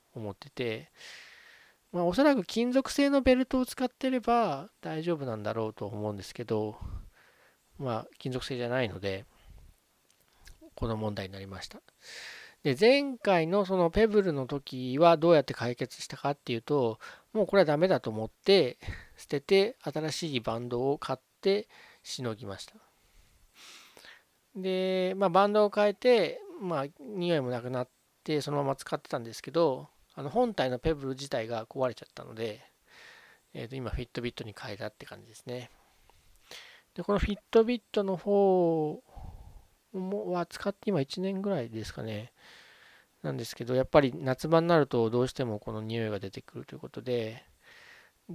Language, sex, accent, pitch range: Japanese, male, native, 120-200 Hz